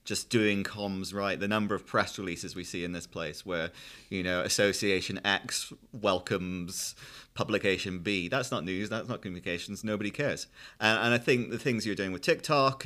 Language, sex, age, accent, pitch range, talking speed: English, male, 30-49, British, 90-105 Hz, 180 wpm